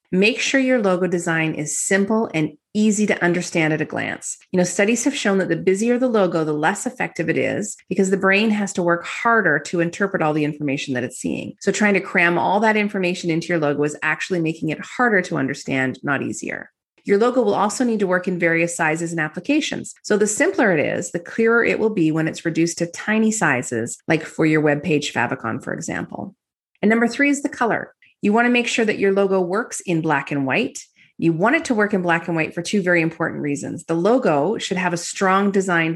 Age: 30-49